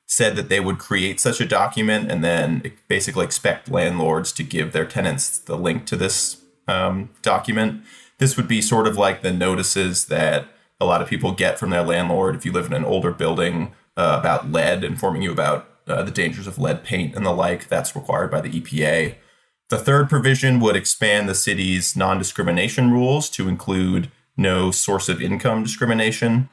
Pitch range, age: 95-120 Hz, 20-39